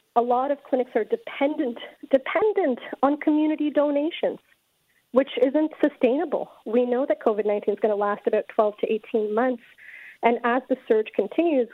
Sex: female